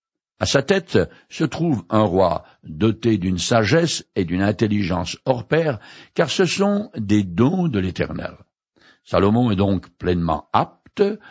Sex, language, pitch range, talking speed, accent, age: male, French, 100-165 Hz, 145 wpm, French, 60-79